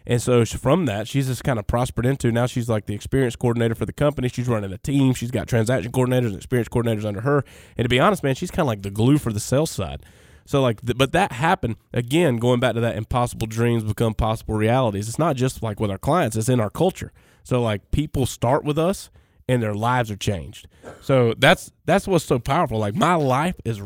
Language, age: English, 20-39